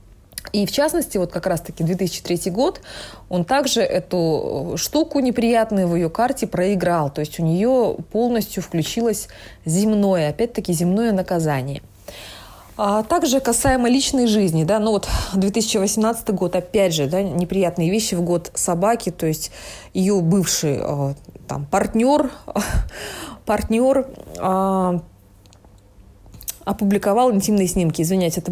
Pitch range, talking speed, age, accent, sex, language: 175-220 Hz, 120 wpm, 20-39, native, female, Russian